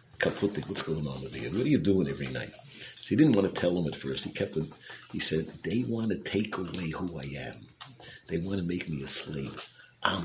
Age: 50-69